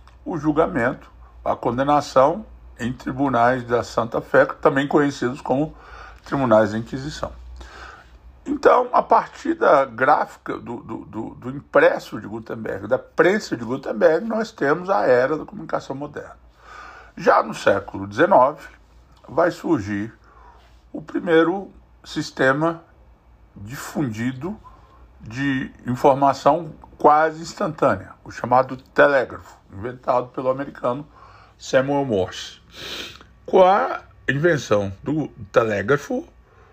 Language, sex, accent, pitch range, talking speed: Portuguese, male, Brazilian, 115-160 Hz, 105 wpm